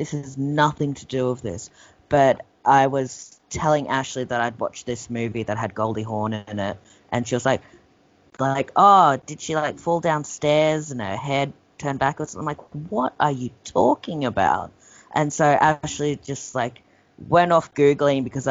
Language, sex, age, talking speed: English, female, 30-49, 180 wpm